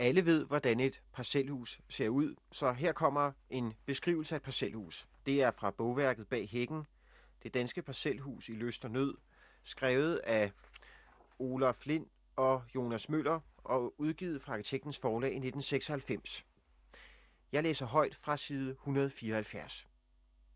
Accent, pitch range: native, 115-150 Hz